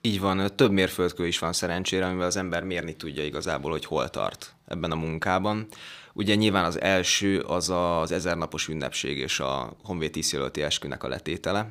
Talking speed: 175 wpm